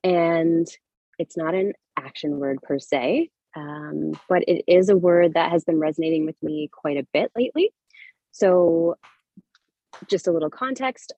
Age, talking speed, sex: 20-39, 155 wpm, female